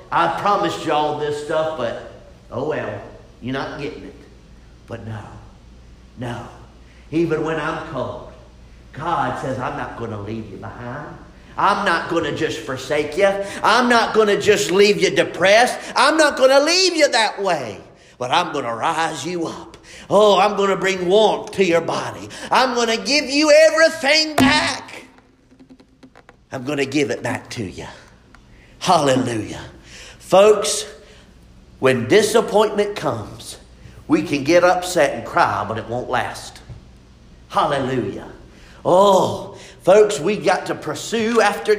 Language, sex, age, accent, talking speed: English, male, 50-69, American, 150 wpm